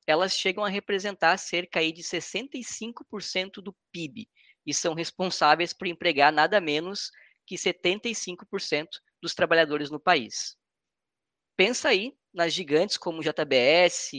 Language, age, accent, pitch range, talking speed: Portuguese, 10-29, Brazilian, 160-210 Hz, 120 wpm